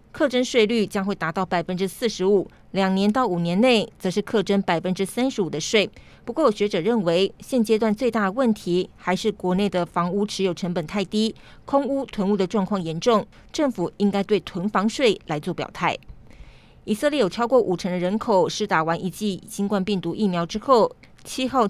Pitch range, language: 185-225 Hz, Chinese